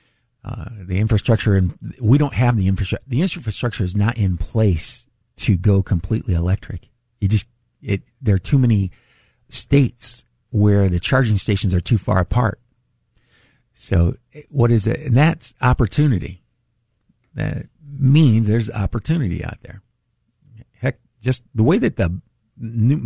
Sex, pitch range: male, 100-125 Hz